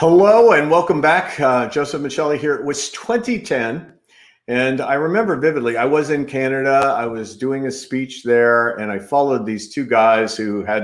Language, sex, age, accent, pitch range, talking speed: English, male, 50-69, American, 105-130 Hz, 185 wpm